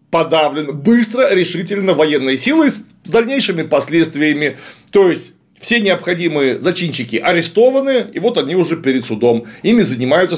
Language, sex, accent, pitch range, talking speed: Russian, male, native, 140-205 Hz, 125 wpm